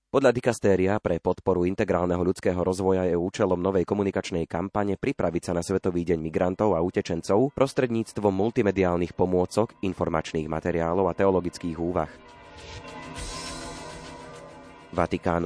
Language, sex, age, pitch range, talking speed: Slovak, male, 30-49, 85-100 Hz, 115 wpm